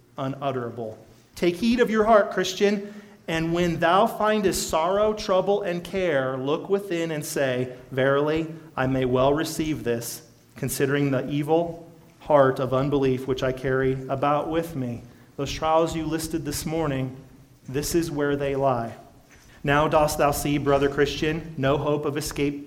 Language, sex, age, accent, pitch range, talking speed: English, male, 40-59, American, 130-160 Hz, 155 wpm